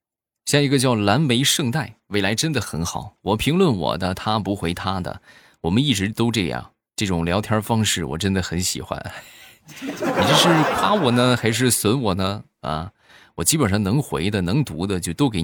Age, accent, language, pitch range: 20-39, native, Chinese, 95-125 Hz